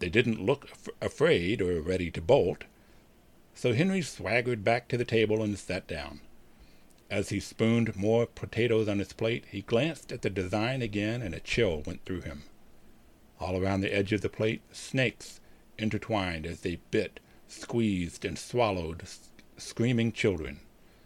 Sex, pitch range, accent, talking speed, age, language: male, 90-115 Hz, American, 155 wpm, 60-79, English